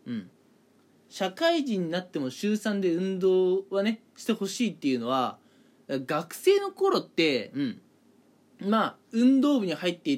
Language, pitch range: Japanese, 165-275 Hz